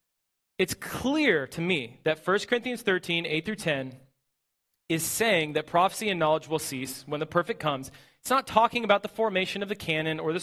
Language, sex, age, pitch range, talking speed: English, male, 30-49, 150-210 Hz, 195 wpm